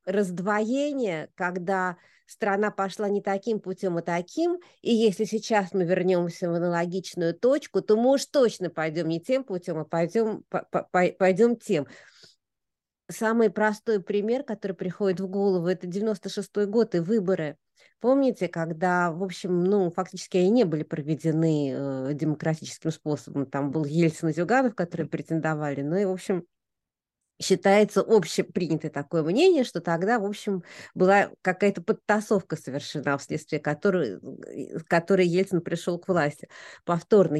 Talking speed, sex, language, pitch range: 135 wpm, female, Russian, 175-225 Hz